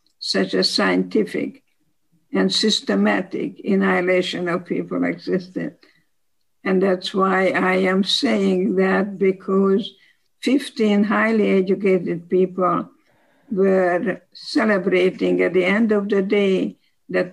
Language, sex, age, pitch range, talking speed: English, female, 60-79, 190-210 Hz, 105 wpm